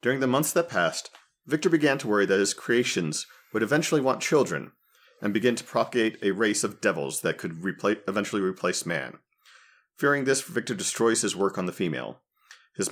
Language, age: English, 40-59